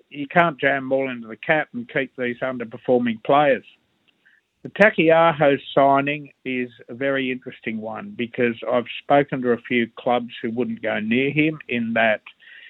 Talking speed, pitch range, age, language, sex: 160 wpm, 120-145 Hz, 50-69, English, male